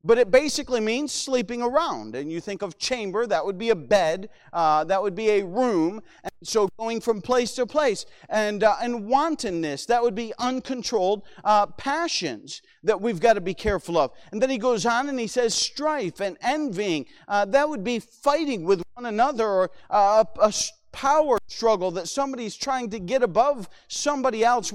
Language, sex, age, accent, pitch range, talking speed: English, male, 40-59, American, 180-240 Hz, 190 wpm